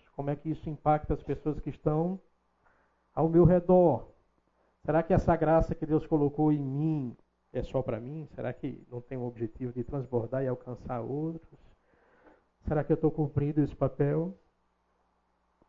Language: Portuguese